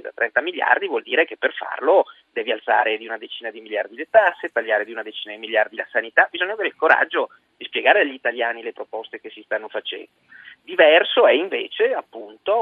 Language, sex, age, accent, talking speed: Italian, male, 40-59, native, 205 wpm